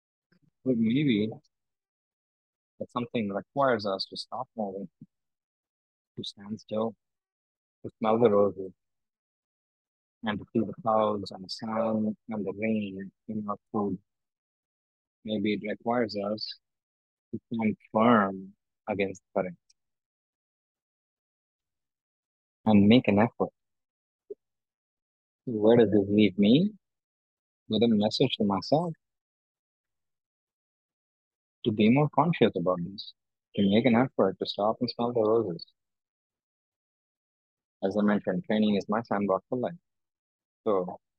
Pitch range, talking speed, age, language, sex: 95-120 Hz, 115 wpm, 30-49, English, male